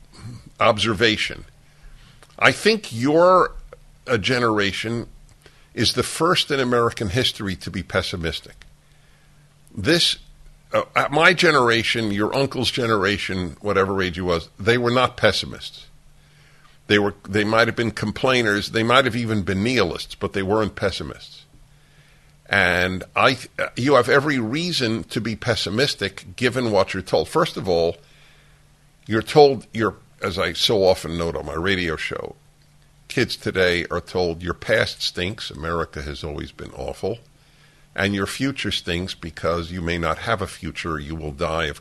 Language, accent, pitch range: English, American, 85-135 Hz